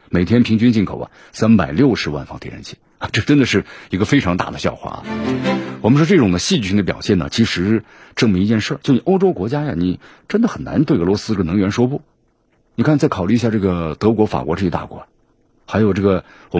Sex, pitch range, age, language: male, 90-115 Hz, 50-69, Chinese